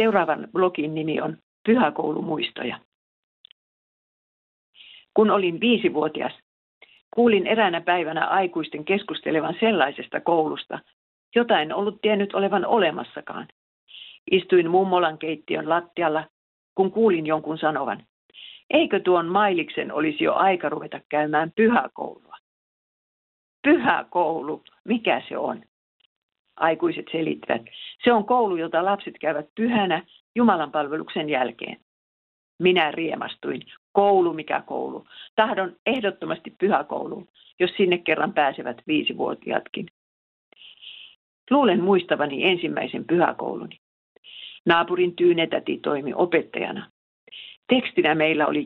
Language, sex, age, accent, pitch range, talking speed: Finnish, female, 50-69, native, 160-220 Hz, 95 wpm